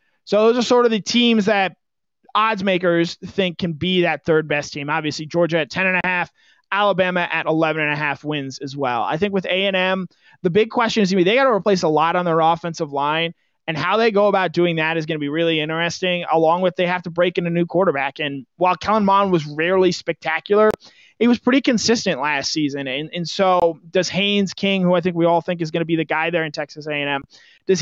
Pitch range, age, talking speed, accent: 160-190 Hz, 20-39, 235 wpm, American